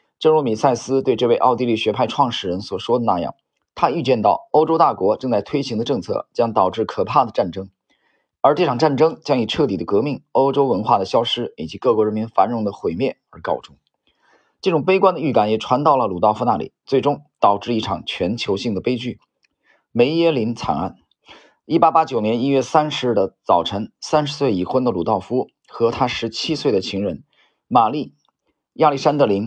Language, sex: Chinese, male